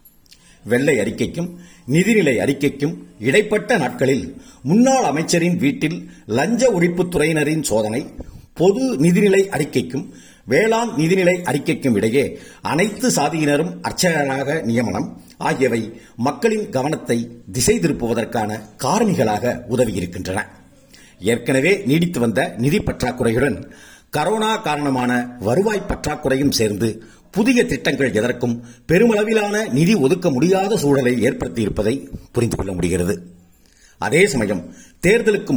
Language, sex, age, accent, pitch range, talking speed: Tamil, male, 50-69, native, 120-195 Hz, 95 wpm